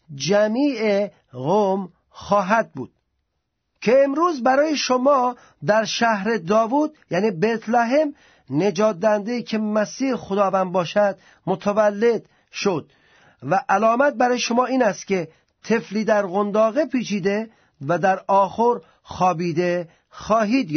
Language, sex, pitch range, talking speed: Persian, male, 205-250 Hz, 105 wpm